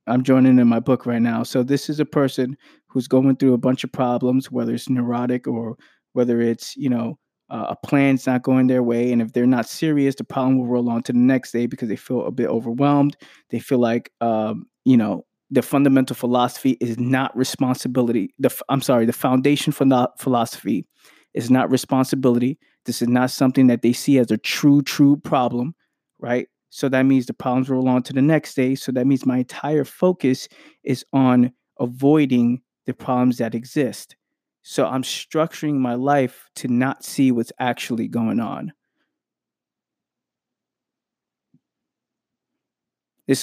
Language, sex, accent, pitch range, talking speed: English, male, American, 120-135 Hz, 175 wpm